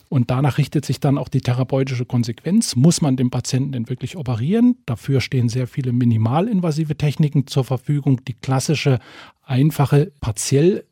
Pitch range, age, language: 125-150 Hz, 40-59, German